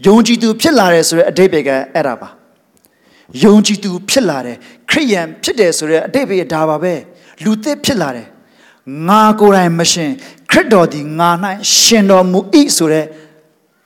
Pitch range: 155-210 Hz